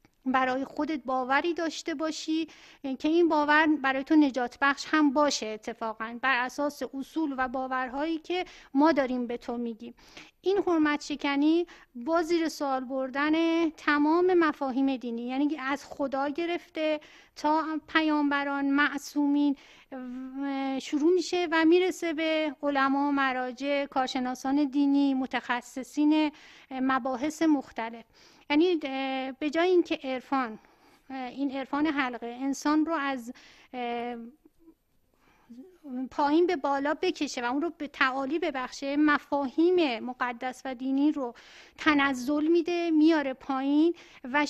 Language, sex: Persian, female